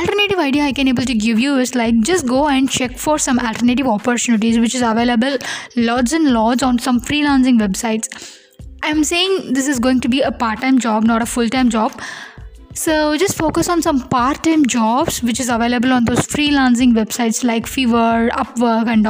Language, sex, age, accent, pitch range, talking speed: Tamil, female, 20-39, native, 235-280 Hz, 200 wpm